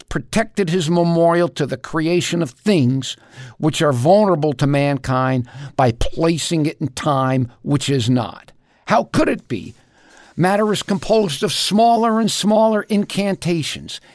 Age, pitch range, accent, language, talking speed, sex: 50-69, 135-175 Hz, American, English, 140 wpm, male